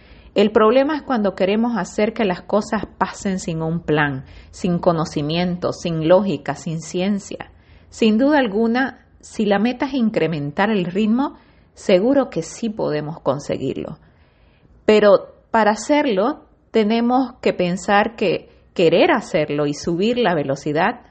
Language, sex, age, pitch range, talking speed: Spanish, female, 30-49, 165-230 Hz, 135 wpm